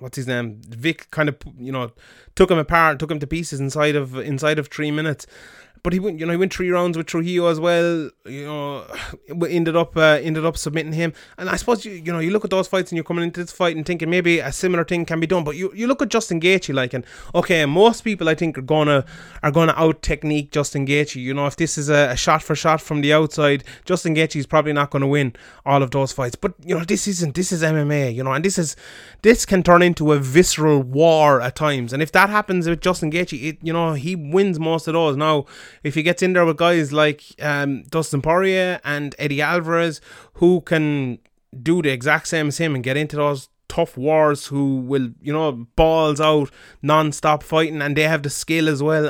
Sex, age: male, 20-39